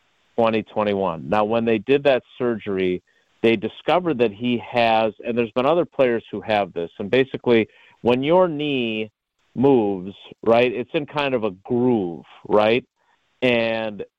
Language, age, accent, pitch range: English, 40-59, American, 110-135 Hz